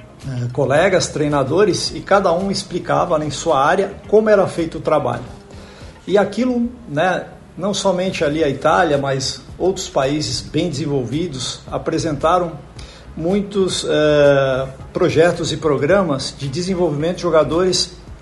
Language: Portuguese